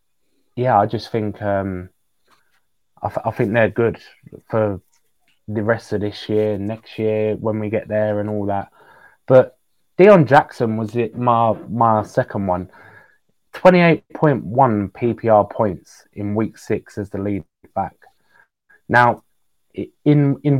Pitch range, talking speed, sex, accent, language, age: 100-120 Hz, 140 wpm, male, British, English, 20-39